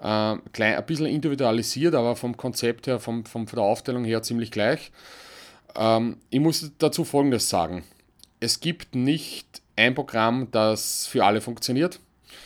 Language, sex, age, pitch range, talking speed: English, male, 30-49, 115-155 Hz, 140 wpm